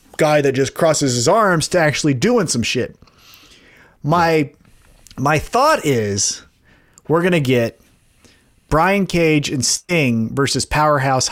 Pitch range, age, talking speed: 130-165 Hz, 30-49, 125 wpm